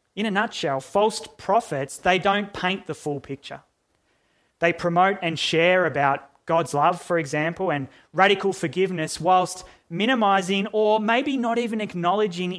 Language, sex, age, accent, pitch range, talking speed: English, male, 30-49, Australian, 140-185 Hz, 145 wpm